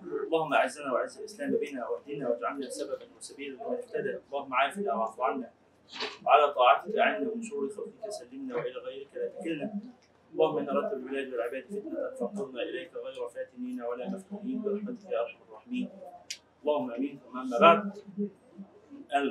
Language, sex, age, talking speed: Arabic, male, 30-49, 145 wpm